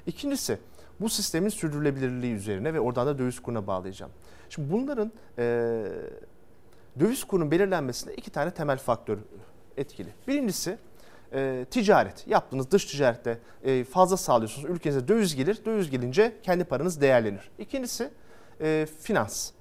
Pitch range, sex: 125-195 Hz, male